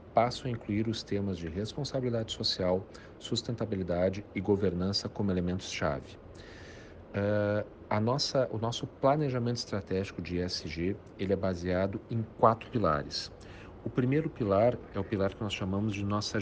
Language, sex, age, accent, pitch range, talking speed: Portuguese, male, 40-59, Brazilian, 95-115 Hz, 145 wpm